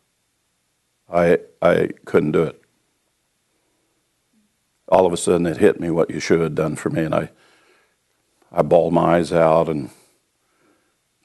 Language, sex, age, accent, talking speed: English, male, 50-69, American, 150 wpm